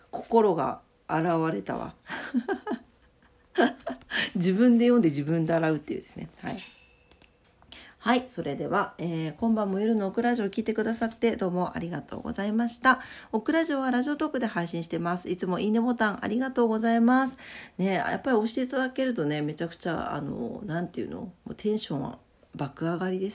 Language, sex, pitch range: Japanese, female, 170-235 Hz